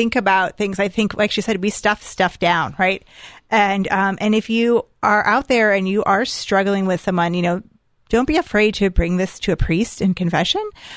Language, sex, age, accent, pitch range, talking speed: English, female, 30-49, American, 180-210 Hz, 220 wpm